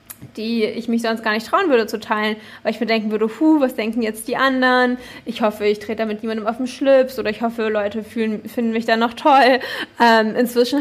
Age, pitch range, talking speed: 20-39, 210-235 Hz, 240 wpm